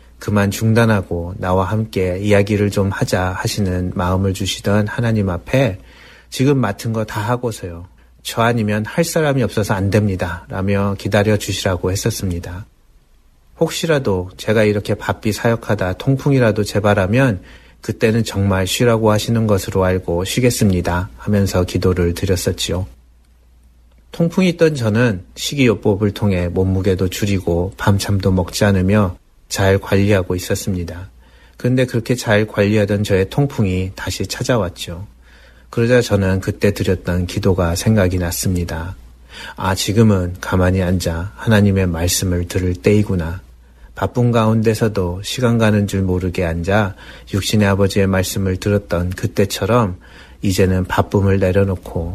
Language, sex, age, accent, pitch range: Korean, male, 30-49, native, 90-110 Hz